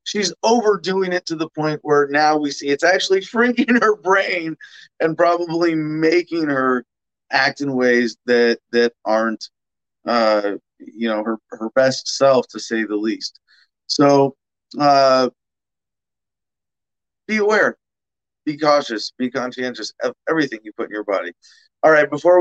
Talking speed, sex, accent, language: 145 wpm, male, American, English